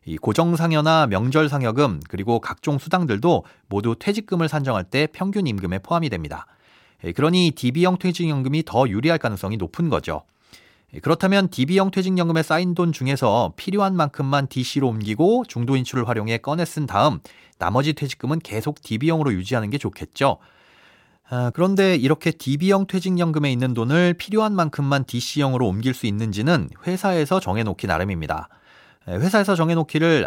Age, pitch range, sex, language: 40-59, 115-165 Hz, male, Korean